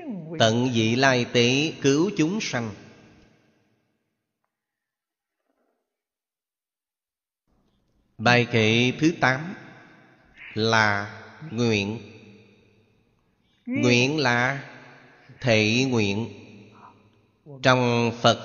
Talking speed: 60 wpm